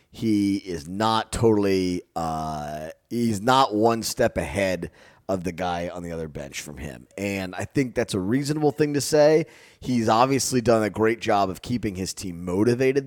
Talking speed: 180 wpm